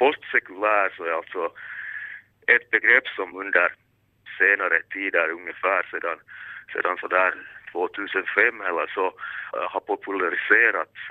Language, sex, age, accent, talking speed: Finnish, male, 30-49, native, 95 wpm